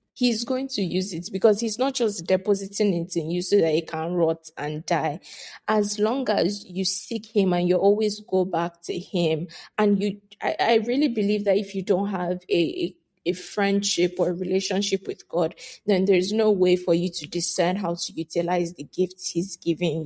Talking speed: 205 wpm